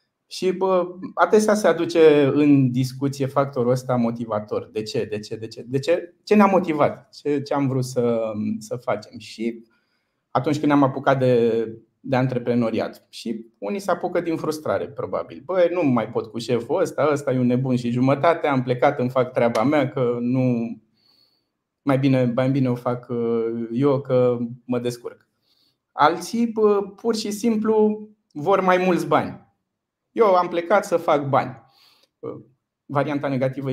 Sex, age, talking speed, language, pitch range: male, 20-39, 160 wpm, Romanian, 125-160 Hz